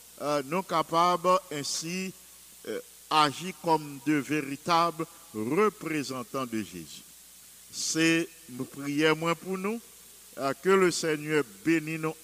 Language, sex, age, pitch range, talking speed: English, male, 50-69, 140-175 Hz, 120 wpm